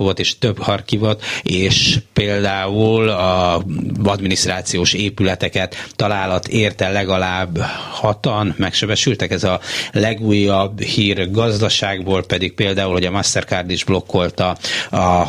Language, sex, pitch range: Hungarian, male, 90-105 Hz